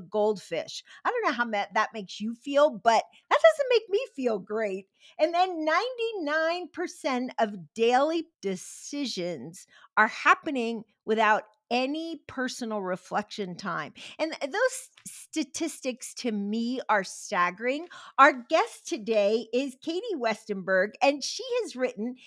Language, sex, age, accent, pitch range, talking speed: English, female, 50-69, American, 215-295 Hz, 125 wpm